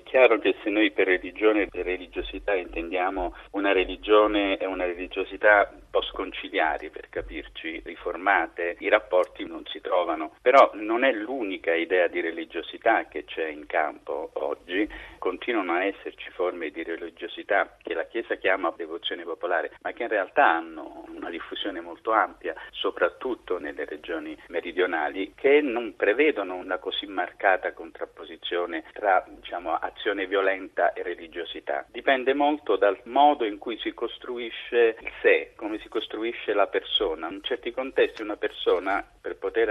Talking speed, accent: 150 wpm, native